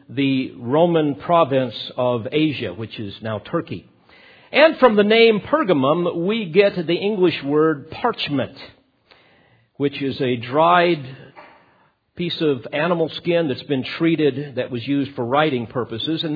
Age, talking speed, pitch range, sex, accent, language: 50-69, 140 wpm, 125-170 Hz, male, American, English